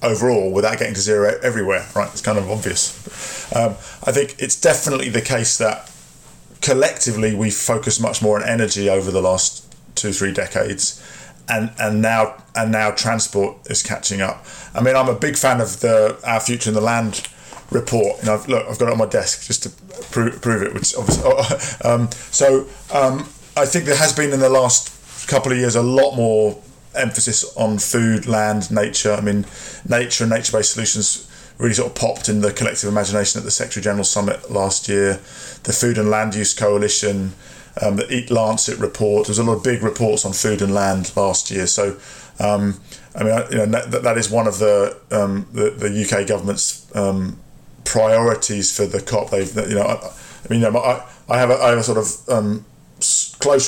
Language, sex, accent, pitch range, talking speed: English, male, British, 105-120 Hz, 195 wpm